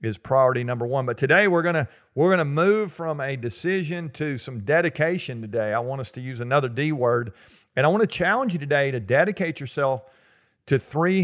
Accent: American